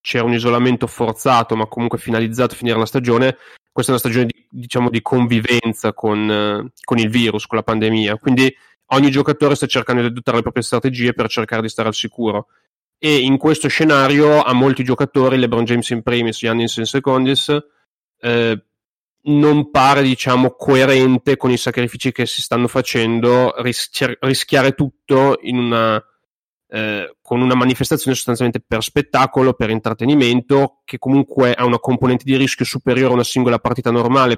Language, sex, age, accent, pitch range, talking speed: Italian, male, 30-49, native, 115-135 Hz, 165 wpm